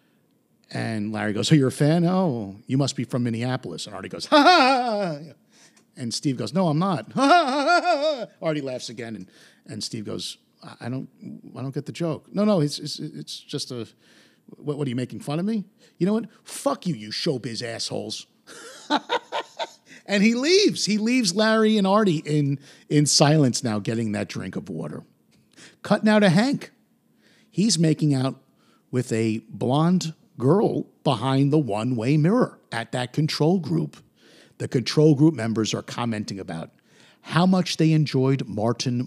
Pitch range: 115-180 Hz